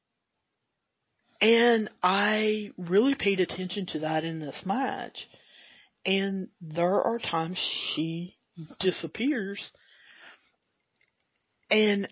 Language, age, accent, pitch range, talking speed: English, 40-59, American, 165-210 Hz, 85 wpm